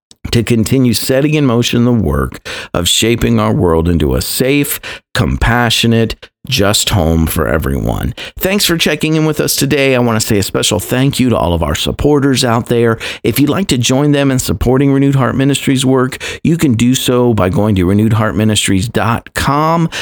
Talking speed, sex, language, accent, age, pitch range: 185 wpm, male, English, American, 50-69, 95-130 Hz